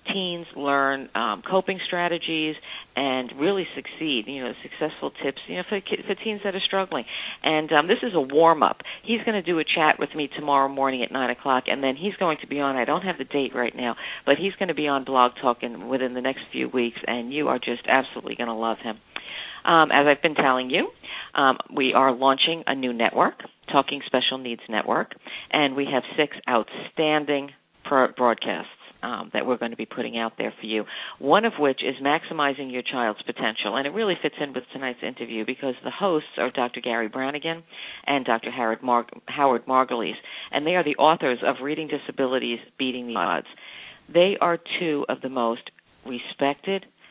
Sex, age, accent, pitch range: female, 50-69, American, 125-155 Hz